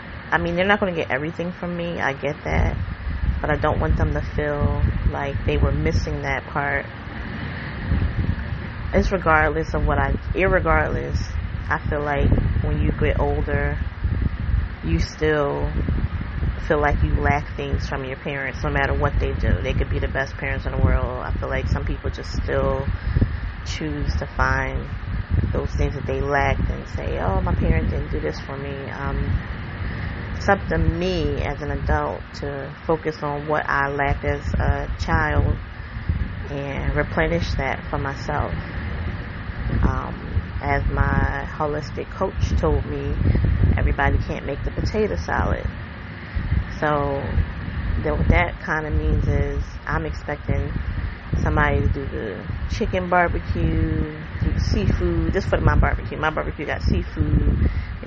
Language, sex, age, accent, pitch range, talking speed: English, female, 20-39, American, 80-100 Hz, 155 wpm